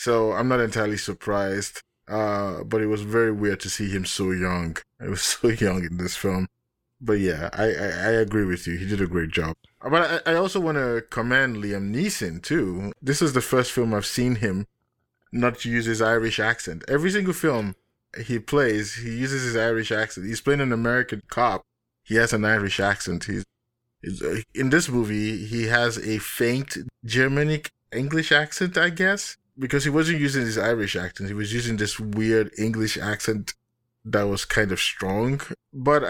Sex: male